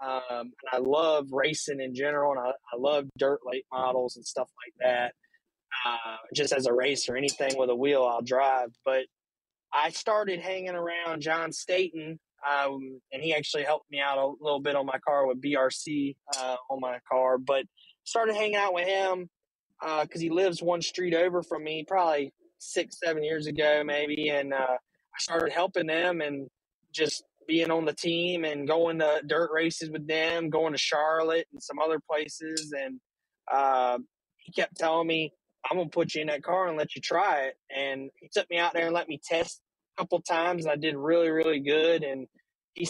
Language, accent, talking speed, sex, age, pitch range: English, American, 200 wpm, male, 20-39, 140-170 Hz